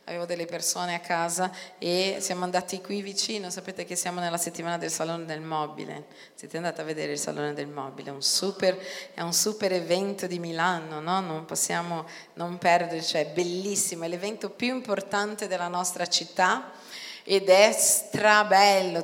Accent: native